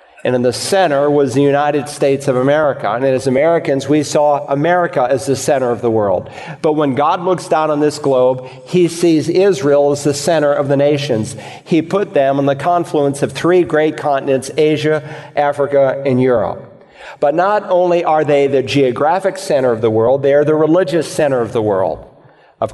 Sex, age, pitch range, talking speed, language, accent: male, 50-69, 135-155 Hz, 195 wpm, English, American